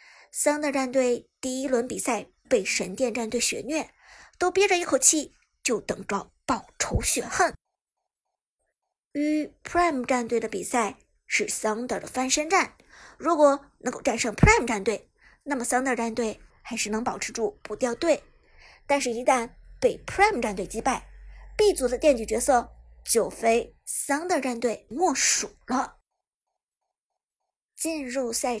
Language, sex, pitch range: Chinese, male, 240-320 Hz